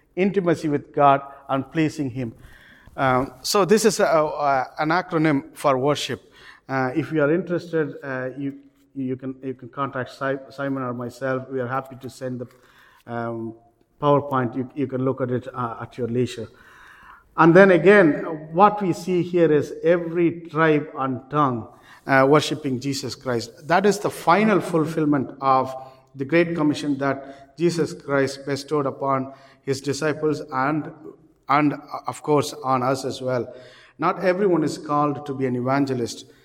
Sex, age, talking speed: male, 50-69, 160 wpm